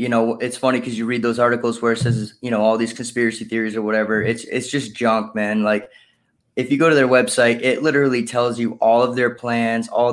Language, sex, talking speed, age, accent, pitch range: English, male, 245 wpm, 20-39, American, 115-125 Hz